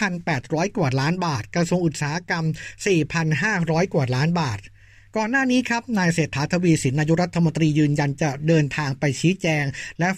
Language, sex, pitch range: Thai, male, 150-180 Hz